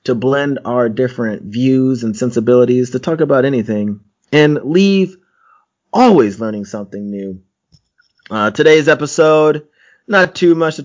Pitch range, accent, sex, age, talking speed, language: 115-135 Hz, American, male, 30-49, 135 wpm, English